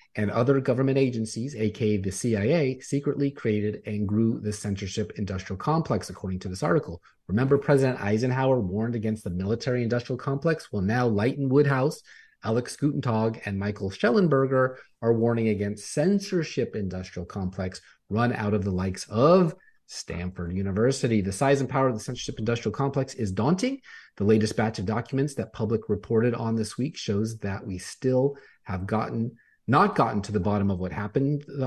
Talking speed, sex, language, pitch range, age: 165 wpm, male, English, 105-135 Hz, 30-49